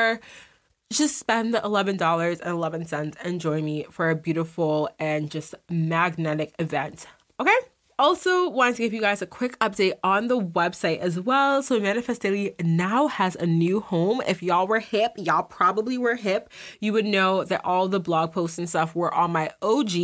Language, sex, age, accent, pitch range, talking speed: English, female, 20-39, American, 165-210 Hz, 175 wpm